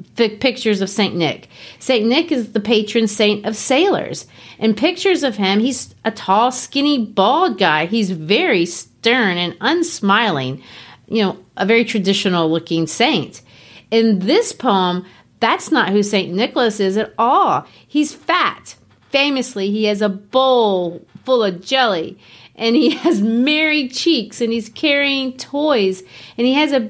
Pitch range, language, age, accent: 195-270 Hz, English, 40-59, American